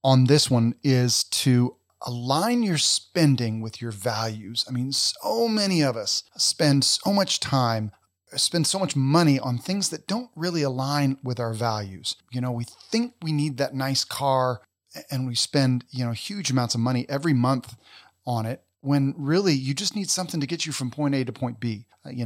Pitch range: 110-140 Hz